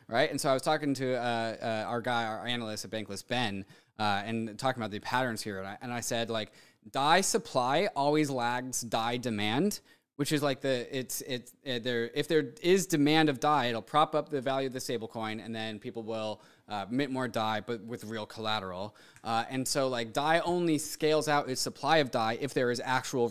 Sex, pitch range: male, 115-150 Hz